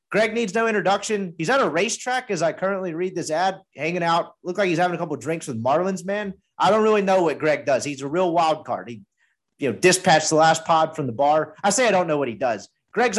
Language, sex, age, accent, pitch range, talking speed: English, male, 30-49, American, 135-185 Hz, 265 wpm